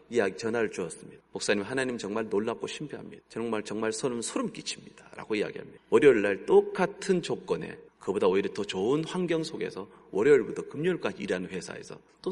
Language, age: Korean, 30-49